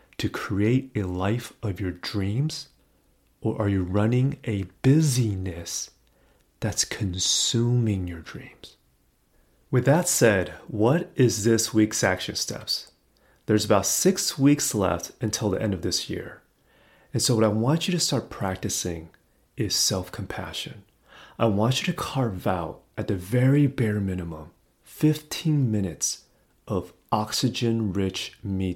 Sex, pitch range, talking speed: male, 95-120 Hz, 135 wpm